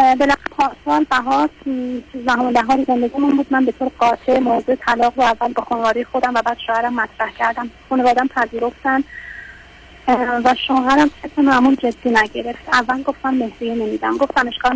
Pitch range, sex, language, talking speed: 230-265 Hz, female, Persian, 155 wpm